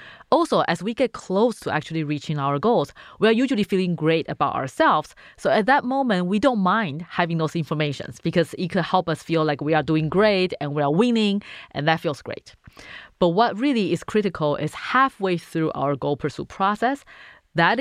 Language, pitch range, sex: English, 150-195 Hz, female